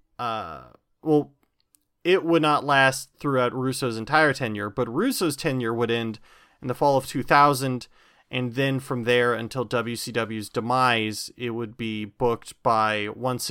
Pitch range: 115-135 Hz